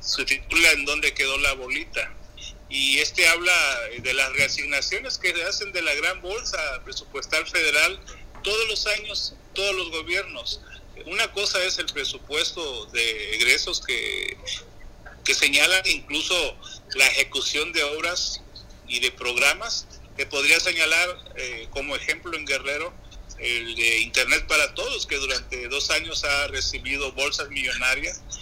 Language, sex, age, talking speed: Spanish, male, 40-59, 140 wpm